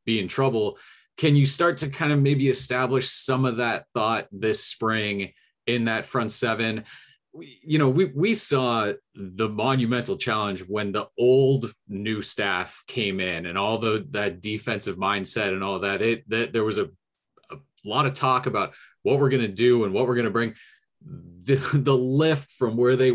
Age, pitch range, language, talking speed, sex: 30-49, 105-135 Hz, English, 185 wpm, male